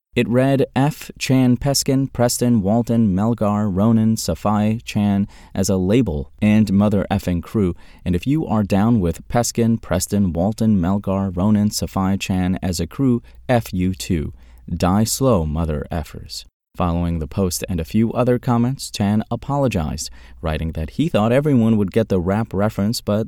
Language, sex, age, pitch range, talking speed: English, male, 30-49, 85-110 Hz, 160 wpm